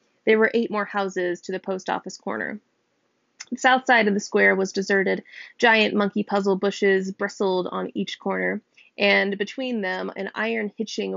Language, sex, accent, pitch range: English, female, American, 185-220 Hz